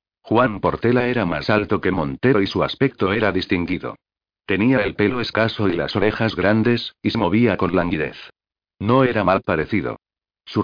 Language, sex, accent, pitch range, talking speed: Spanish, male, Spanish, 95-115 Hz, 170 wpm